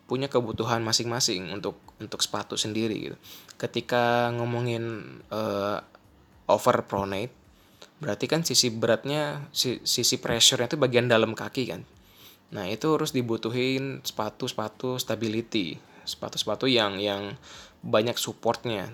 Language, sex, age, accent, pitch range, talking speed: Indonesian, male, 20-39, native, 105-125 Hz, 110 wpm